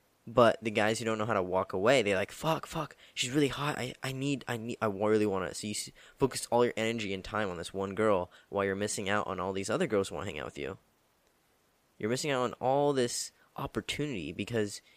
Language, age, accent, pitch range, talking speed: English, 10-29, American, 105-130 Hz, 250 wpm